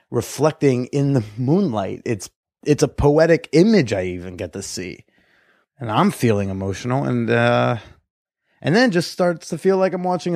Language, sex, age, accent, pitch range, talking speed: English, male, 30-49, American, 110-150 Hz, 170 wpm